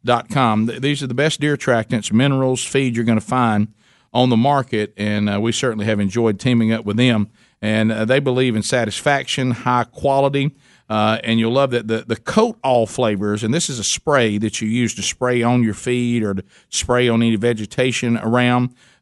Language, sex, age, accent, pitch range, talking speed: English, male, 50-69, American, 110-130 Hz, 200 wpm